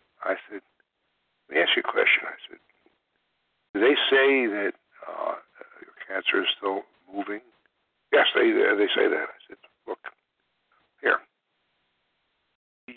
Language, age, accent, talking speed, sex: English, 60-79, American, 140 wpm, male